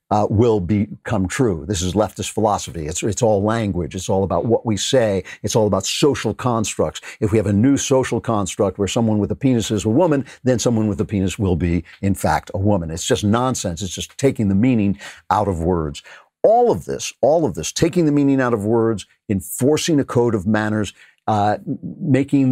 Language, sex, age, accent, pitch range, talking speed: English, male, 50-69, American, 100-120 Hz, 210 wpm